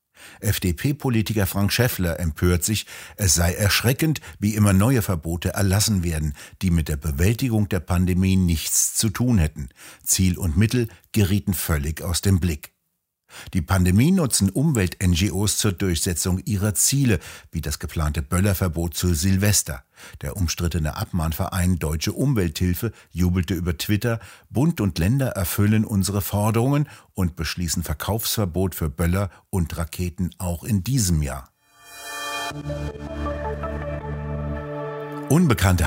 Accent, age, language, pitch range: German, 60-79, German, 85-105 Hz